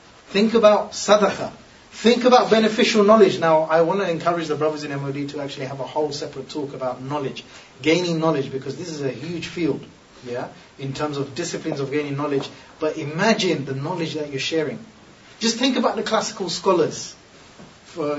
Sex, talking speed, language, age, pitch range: male, 180 wpm, English, 30-49, 140-175 Hz